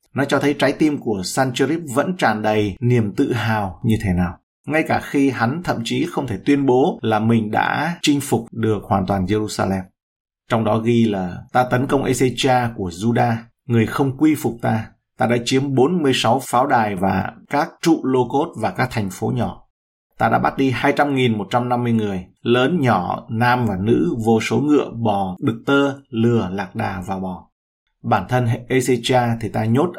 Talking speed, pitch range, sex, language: 190 wpm, 110-135 Hz, male, Vietnamese